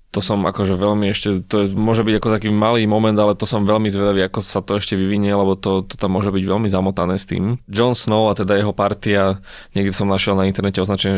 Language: Slovak